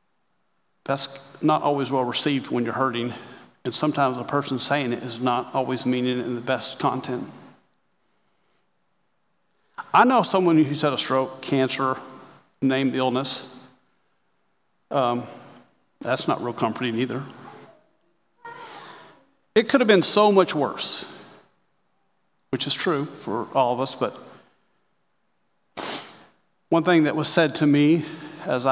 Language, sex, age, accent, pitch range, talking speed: English, male, 40-59, American, 125-155 Hz, 130 wpm